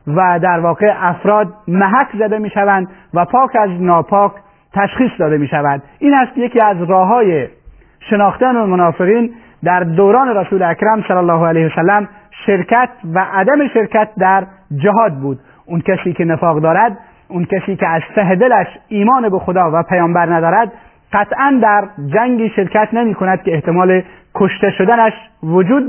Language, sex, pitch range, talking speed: Persian, male, 180-215 Hz, 150 wpm